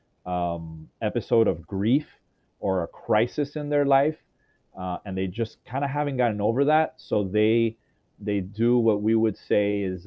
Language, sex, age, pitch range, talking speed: English, male, 30-49, 95-120 Hz, 175 wpm